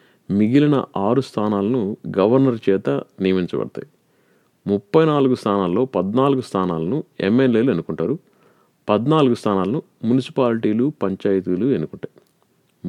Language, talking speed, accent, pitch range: Telugu, 85 wpm, native, 95-135 Hz